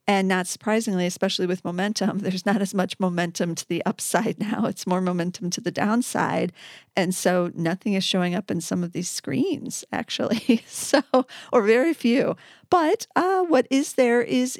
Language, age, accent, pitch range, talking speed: English, 40-59, American, 180-220 Hz, 175 wpm